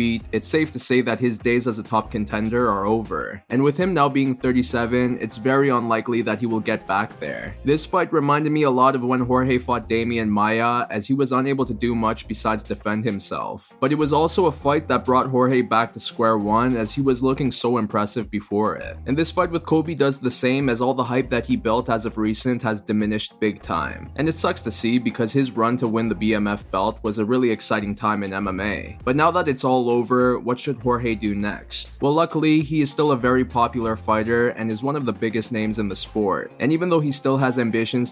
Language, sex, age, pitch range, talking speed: English, male, 20-39, 110-130 Hz, 235 wpm